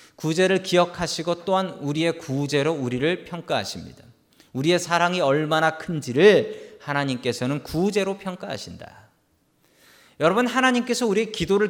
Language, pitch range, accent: Korean, 130-210 Hz, native